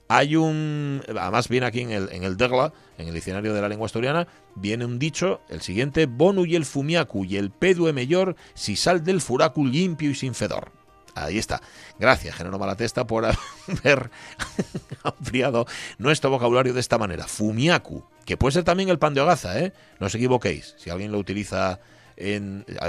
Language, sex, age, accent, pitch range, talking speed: Spanish, male, 40-59, Spanish, 95-140 Hz, 180 wpm